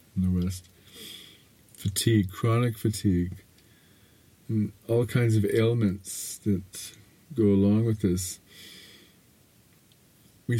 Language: English